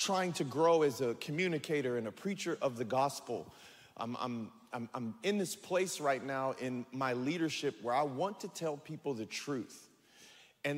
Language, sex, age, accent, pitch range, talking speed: English, male, 40-59, American, 140-195 Hz, 185 wpm